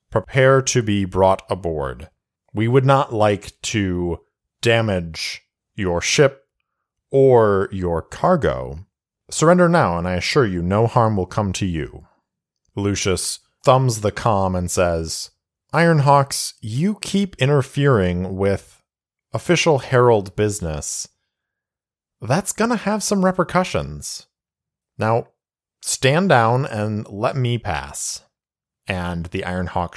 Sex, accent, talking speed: male, American, 115 wpm